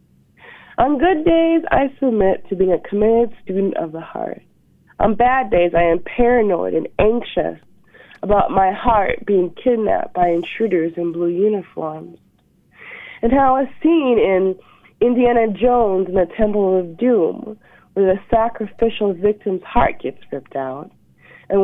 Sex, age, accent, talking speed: female, 30-49, American, 145 wpm